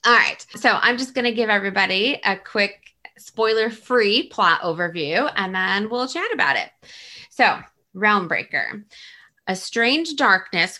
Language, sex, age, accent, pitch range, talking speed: English, female, 20-39, American, 175-230 Hz, 140 wpm